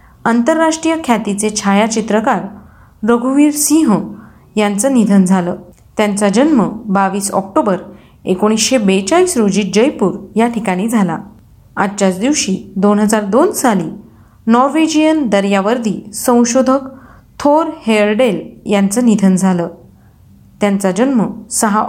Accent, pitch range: native, 200-280 Hz